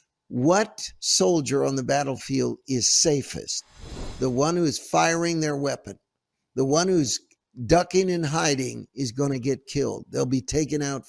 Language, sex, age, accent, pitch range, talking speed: English, male, 60-79, American, 135-175 Hz, 155 wpm